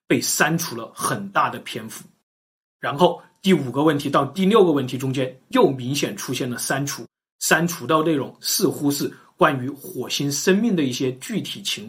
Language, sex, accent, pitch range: Chinese, male, native, 140-200 Hz